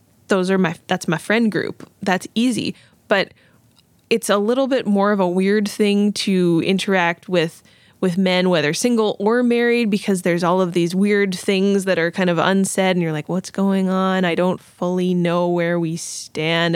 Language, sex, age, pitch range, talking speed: English, female, 20-39, 175-210 Hz, 190 wpm